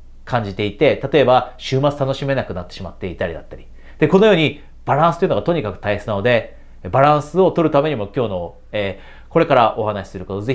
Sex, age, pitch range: male, 40-59, 90-140 Hz